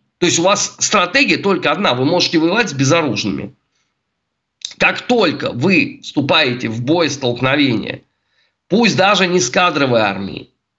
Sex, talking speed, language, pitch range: male, 140 wpm, Russian, 145-195 Hz